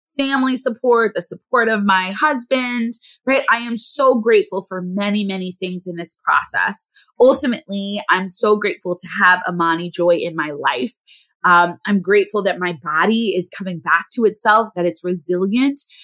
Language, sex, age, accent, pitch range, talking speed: English, female, 20-39, American, 195-260 Hz, 165 wpm